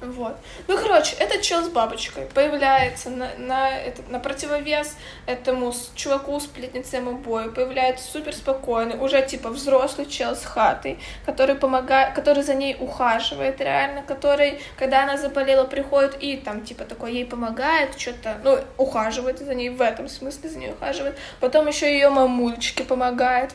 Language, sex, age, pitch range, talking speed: Ukrainian, female, 20-39, 245-280 Hz, 145 wpm